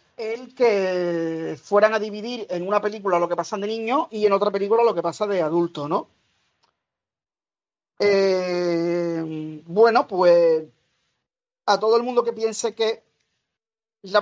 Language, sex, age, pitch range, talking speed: Spanish, male, 40-59, 170-215 Hz, 145 wpm